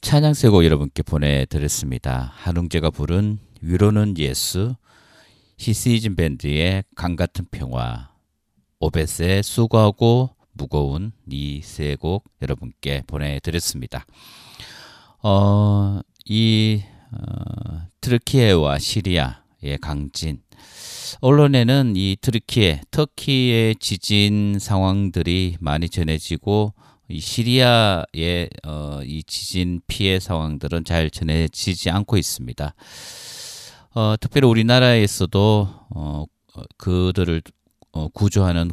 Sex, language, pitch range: male, Korean, 80-105 Hz